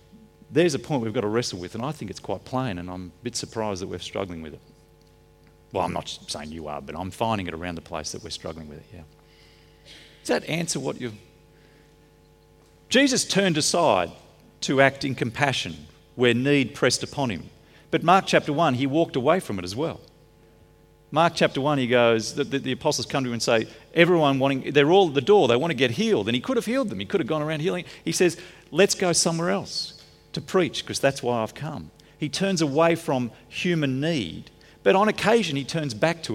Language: English